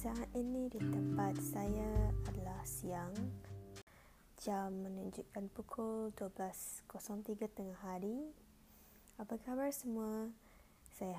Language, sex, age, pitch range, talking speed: Malay, female, 20-39, 190-230 Hz, 90 wpm